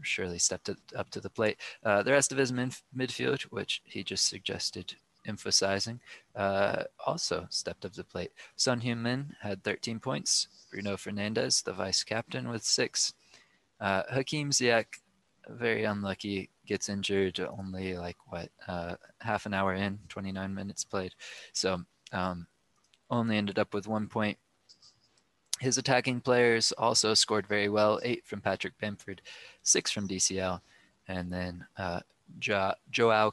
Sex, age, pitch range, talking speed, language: male, 20-39, 95-115 Hz, 145 wpm, English